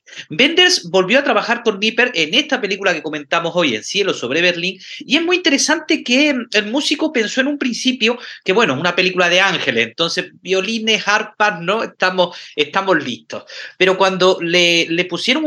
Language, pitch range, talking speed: Spanish, 175-225 Hz, 180 wpm